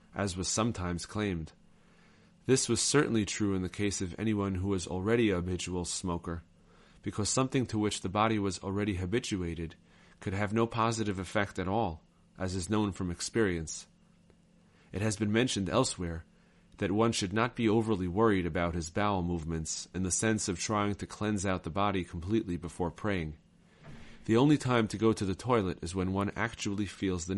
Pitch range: 90-110 Hz